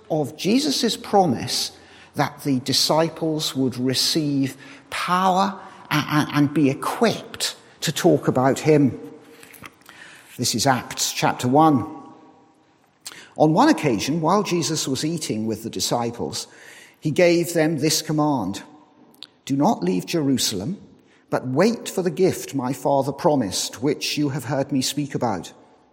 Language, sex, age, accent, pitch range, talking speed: English, male, 50-69, British, 130-170 Hz, 125 wpm